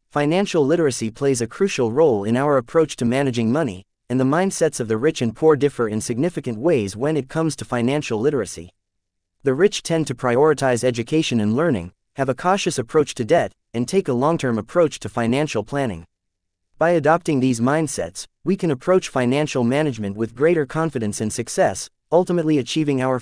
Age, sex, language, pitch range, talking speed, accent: 30-49, male, English, 110-160 Hz, 180 wpm, American